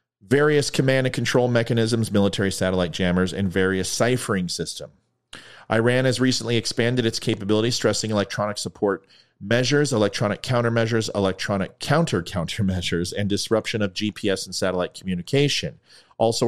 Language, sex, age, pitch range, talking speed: English, male, 40-59, 95-120 Hz, 125 wpm